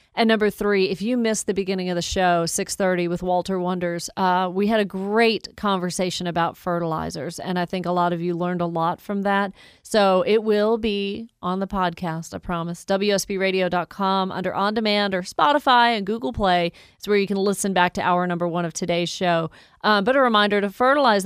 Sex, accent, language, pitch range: female, American, English, 175-205 Hz